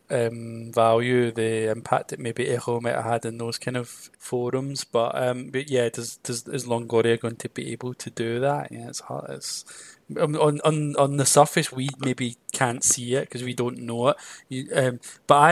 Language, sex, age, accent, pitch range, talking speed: English, male, 20-39, British, 120-145 Hz, 200 wpm